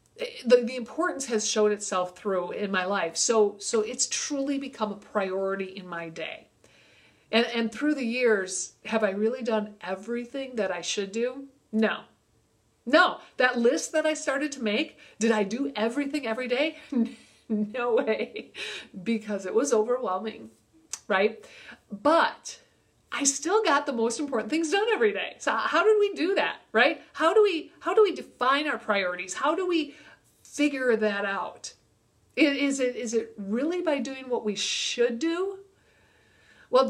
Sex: female